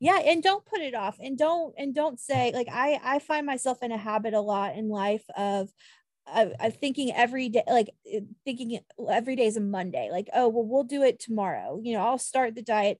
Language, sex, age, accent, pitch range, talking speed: English, female, 30-49, American, 205-255 Hz, 225 wpm